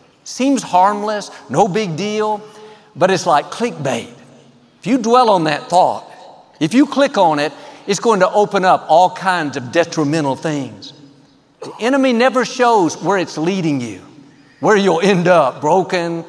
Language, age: English, 50-69